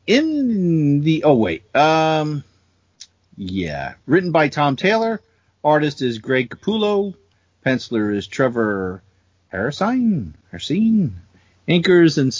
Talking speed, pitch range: 100 wpm, 120-175 Hz